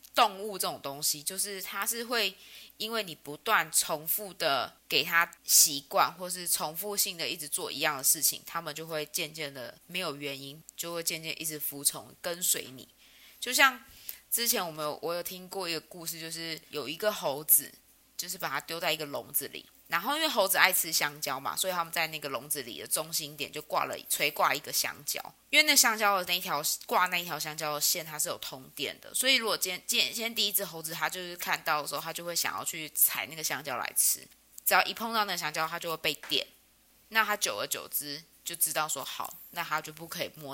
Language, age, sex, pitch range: Chinese, 20-39, female, 155-205 Hz